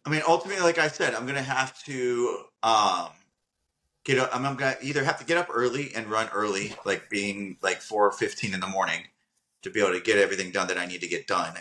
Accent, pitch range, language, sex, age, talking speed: American, 100-145 Hz, English, male, 30-49, 240 wpm